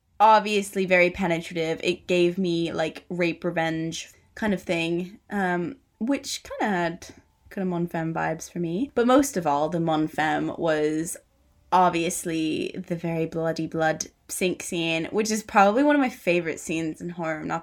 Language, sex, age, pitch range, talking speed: English, female, 20-39, 165-195 Hz, 165 wpm